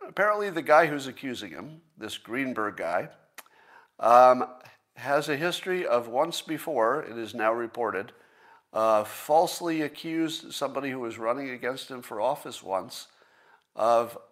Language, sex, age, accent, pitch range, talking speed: English, male, 50-69, American, 115-165 Hz, 140 wpm